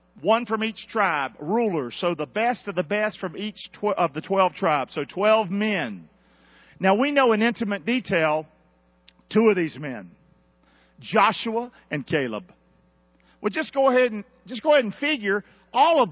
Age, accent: 50-69, American